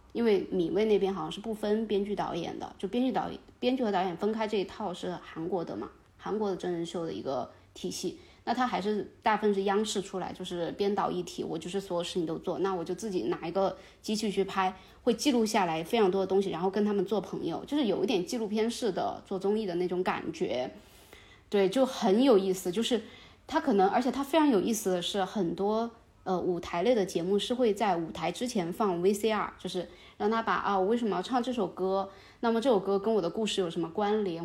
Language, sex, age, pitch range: Chinese, female, 20-39, 180-220 Hz